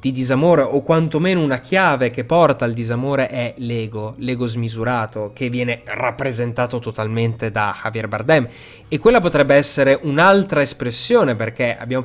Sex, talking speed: male, 145 wpm